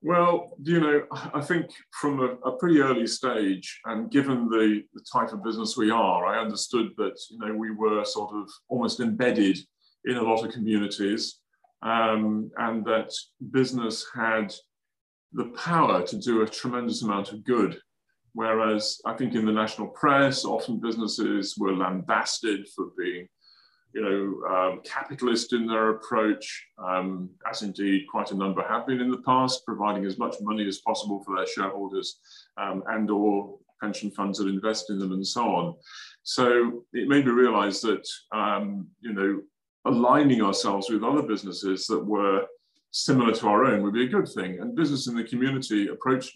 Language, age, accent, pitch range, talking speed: English, 30-49, British, 105-130 Hz, 170 wpm